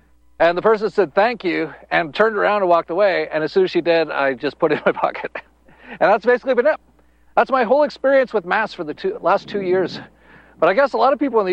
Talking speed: 265 wpm